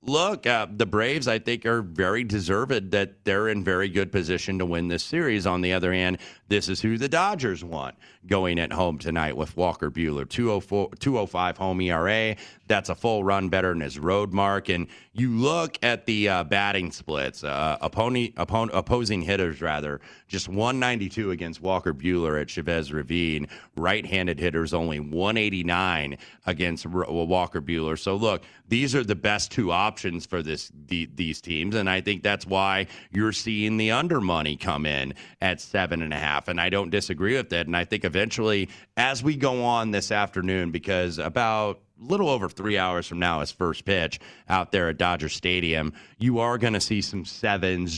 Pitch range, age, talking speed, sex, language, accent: 85-100 Hz, 30-49, 185 wpm, male, English, American